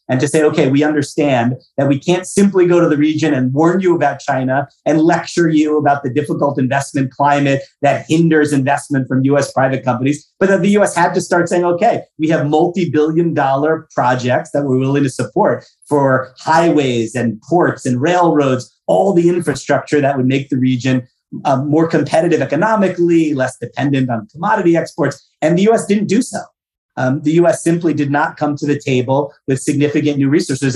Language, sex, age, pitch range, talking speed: English, male, 30-49, 140-170 Hz, 185 wpm